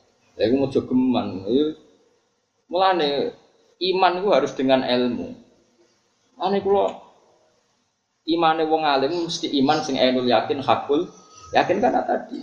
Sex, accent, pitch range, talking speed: male, native, 130-190 Hz, 95 wpm